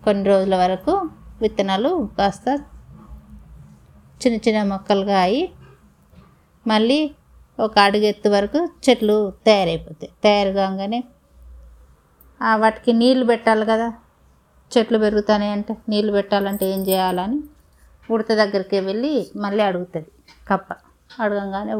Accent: native